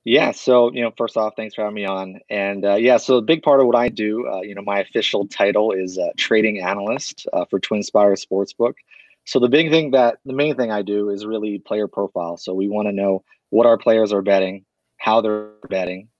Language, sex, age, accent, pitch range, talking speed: English, male, 30-49, American, 95-115 Hz, 235 wpm